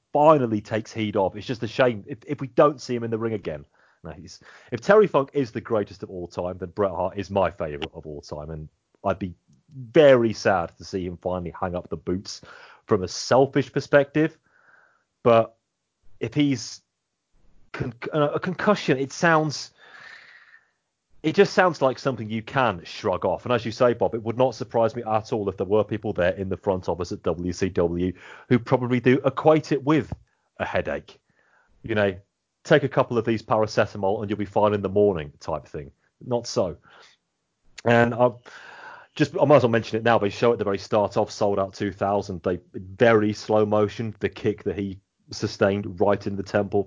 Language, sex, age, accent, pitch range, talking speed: English, male, 30-49, British, 100-130 Hz, 200 wpm